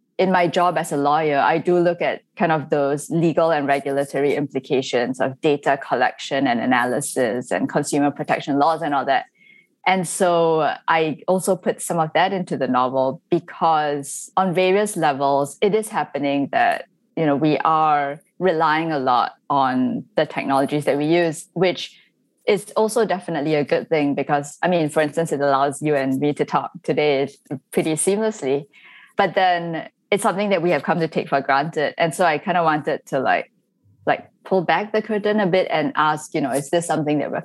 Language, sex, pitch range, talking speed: English, female, 145-185 Hz, 190 wpm